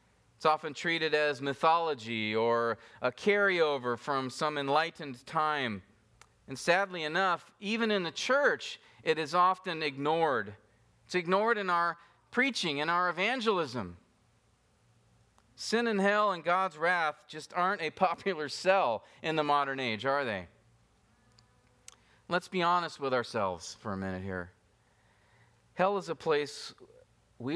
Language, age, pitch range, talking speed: English, 40-59, 115-170 Hz, 135 wpm